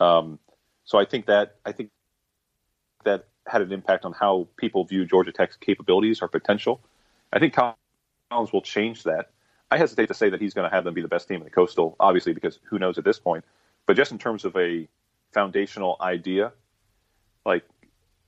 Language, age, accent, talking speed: English, 30-49, American, 195 wpm